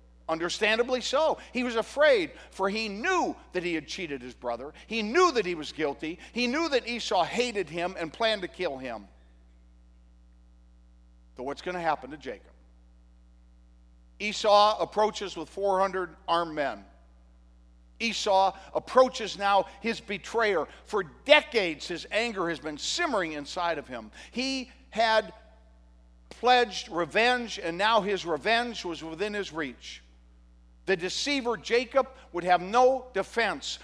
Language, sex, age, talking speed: English, male, 50-69, 140 wpm